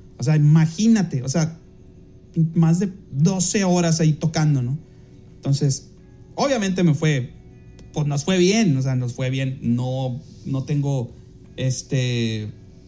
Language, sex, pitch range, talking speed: Spanish, male, 130-180 Hz, 135 wpm